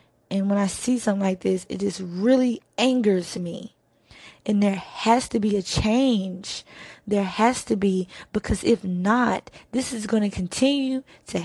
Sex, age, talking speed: female, 20-39, 170 wpm